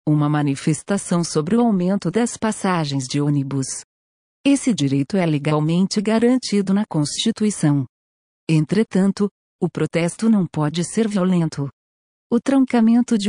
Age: 40-59